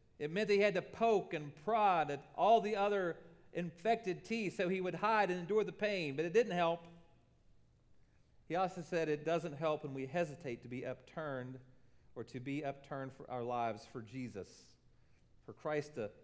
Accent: American